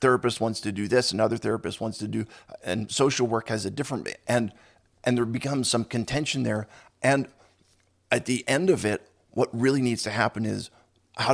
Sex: male